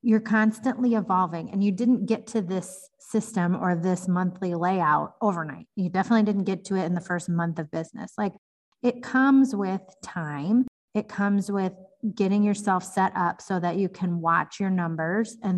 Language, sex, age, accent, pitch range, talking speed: English, female, 30-49, American, 175-220 Hz, 180 wpm